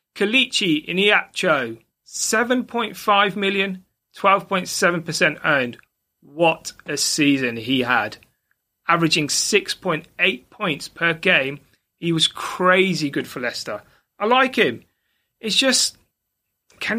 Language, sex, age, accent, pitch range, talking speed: English, male, 30-49, British, 160-215 Hz, 100 wpm